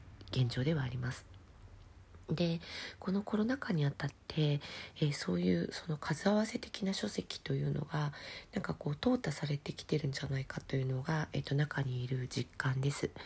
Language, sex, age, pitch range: Japanese, female, 40-59, 135-160 Hz